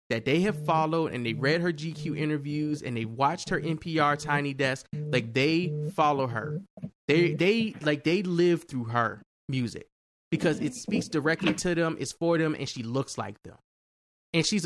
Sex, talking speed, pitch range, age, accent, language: male, 185 wpm, 130-180 Hz, 20-39, American, English